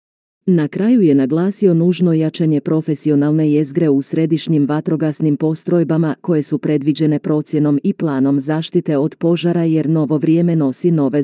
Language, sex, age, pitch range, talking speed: Croatian, female, 40-59, 150-170 Hz, 140 wpm